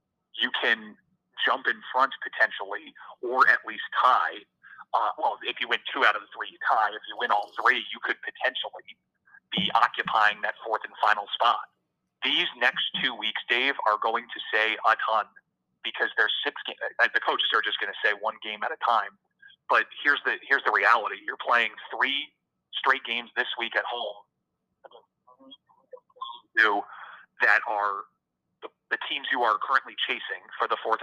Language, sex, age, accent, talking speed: English, male, 30-49, American, 170 wpm